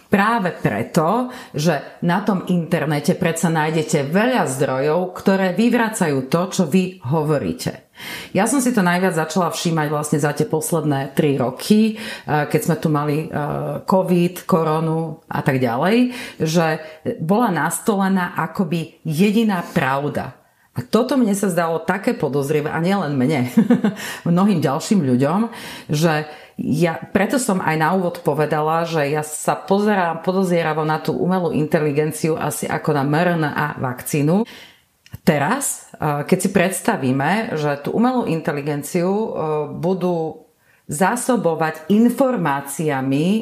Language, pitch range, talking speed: Slovak, 150-195 Hz, 125 wpm